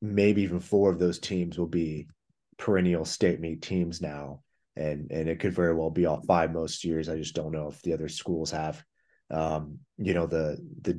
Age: 30-49